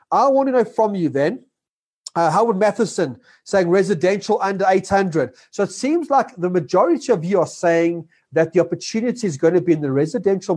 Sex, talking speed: male, 195 wpm